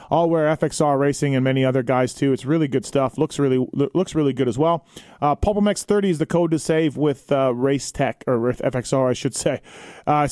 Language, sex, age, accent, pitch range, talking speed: English, male, 30-49, American, 135-165 Hz, 225 wpm